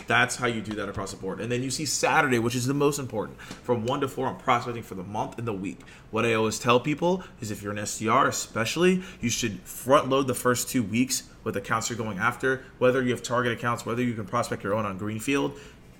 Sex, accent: male, American